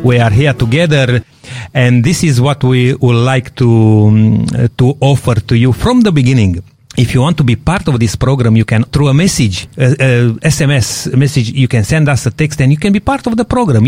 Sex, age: male, 40-59